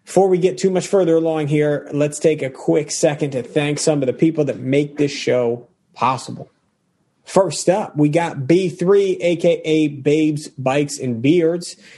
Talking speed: 170 wpm